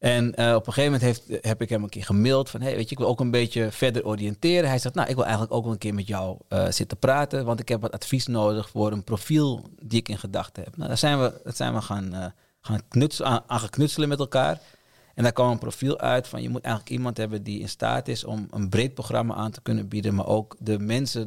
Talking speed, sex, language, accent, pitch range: 275 wpm, male, English, Dutch, 105-125 Hz